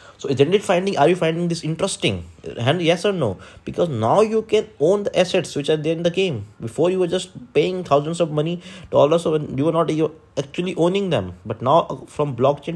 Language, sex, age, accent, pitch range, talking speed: English, male, 20-39, Indian, 105-150 Hz, 220 wpm